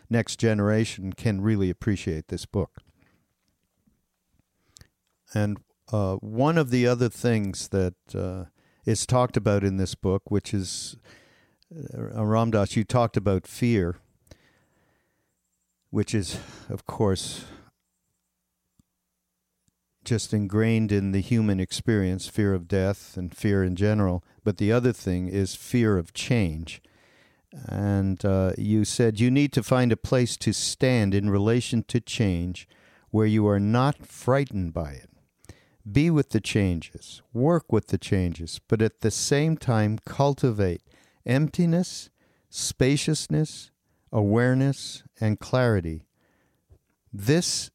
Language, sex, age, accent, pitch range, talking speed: English, male, 50-69, American, 95-120 Hz, 125 wpm